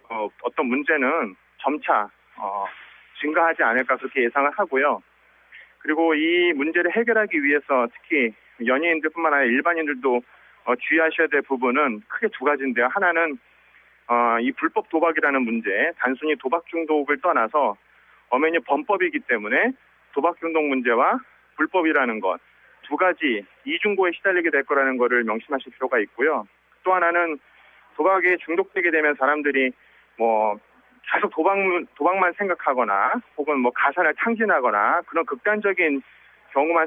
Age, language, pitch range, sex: 40-59, Korean, 140-195 Hz, male